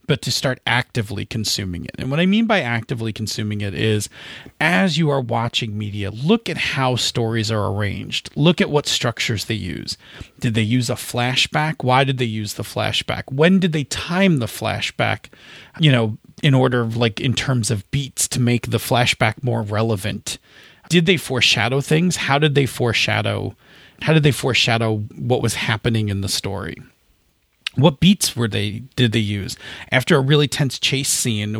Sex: male